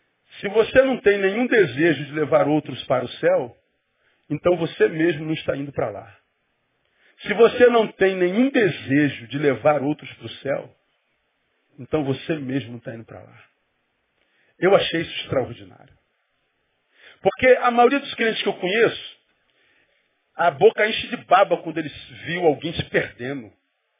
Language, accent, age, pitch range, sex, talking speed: Portuguese, Brazilian, 40-59, 160-265 Hz, male, 160 wpm